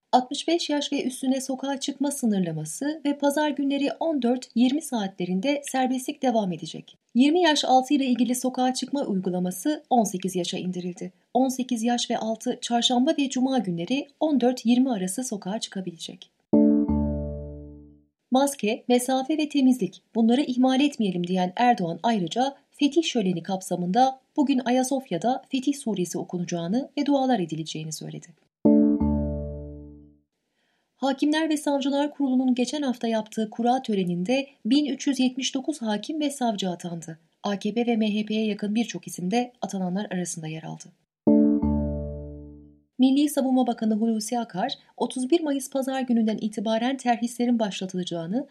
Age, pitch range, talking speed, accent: 30-49, 180-260 Hz, 120 wpm, native